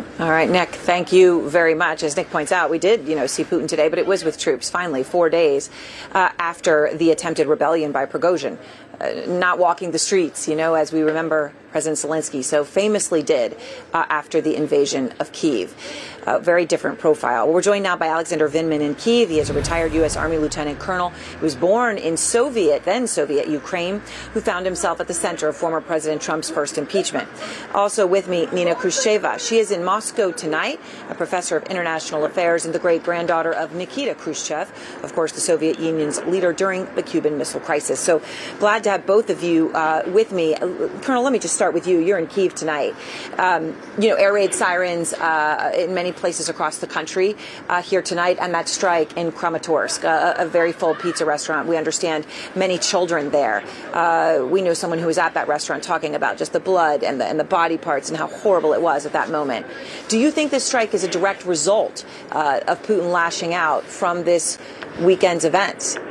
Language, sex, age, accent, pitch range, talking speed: English, female, 40-59, American, 160-185 Hz, 205 wpm